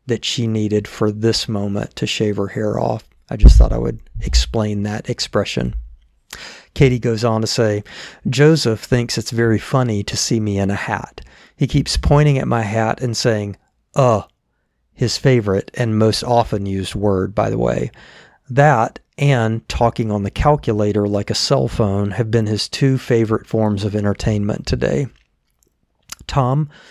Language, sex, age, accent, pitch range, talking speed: English, male, 40-59, American, 105-130 Hz, 165 wpm